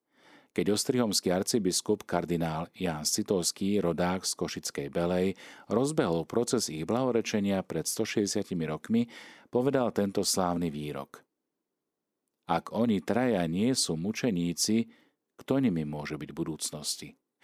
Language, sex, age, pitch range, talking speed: Slovak, male, 40-59, 85-110 Hz, 110 wpm